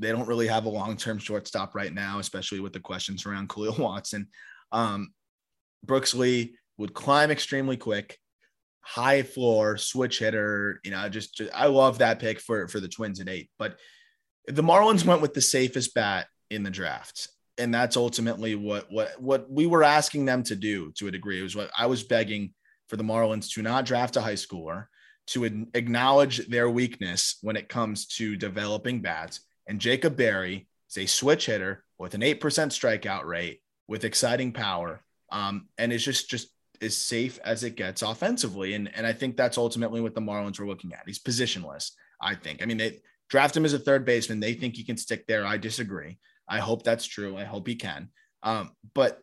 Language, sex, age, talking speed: English, male, 20-39, 195 wpm